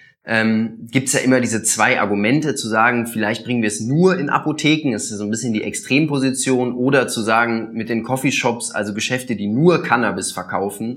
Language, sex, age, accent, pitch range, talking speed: German, male, 20-39, German, 105-125 Hz, 190 wpm